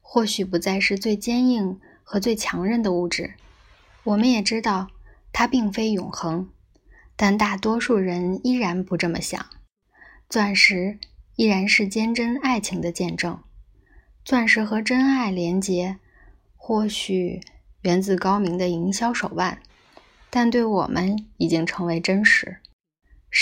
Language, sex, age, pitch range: Chinese, female, 20-39, 185-225 Hz